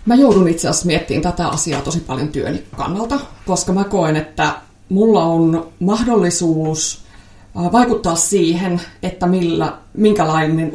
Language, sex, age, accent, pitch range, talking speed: Finnish, female, 30-49, native, 160-205 Hz, 130 wpm